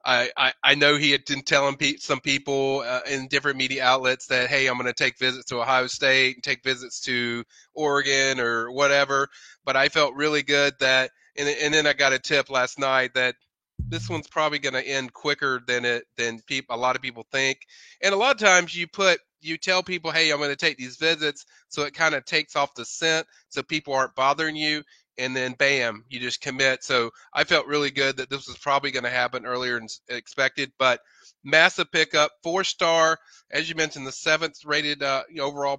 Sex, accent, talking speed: male, American, 210 wpm